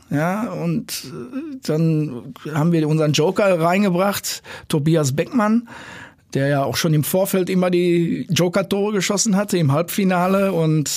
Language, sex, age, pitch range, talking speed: German, male, 50-69, 130-170 Hz, 130 wpm